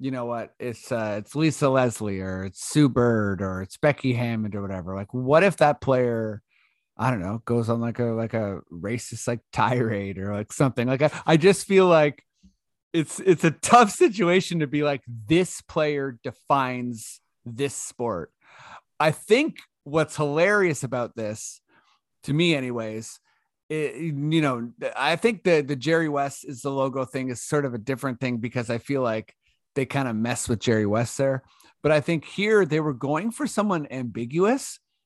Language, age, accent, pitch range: English, 30-49, American, 120-155 Hz